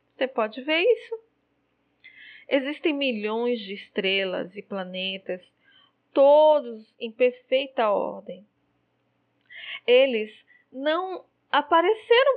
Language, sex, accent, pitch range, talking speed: Portuguese, female, Brazilian, 205-250 Hz, 80 wpm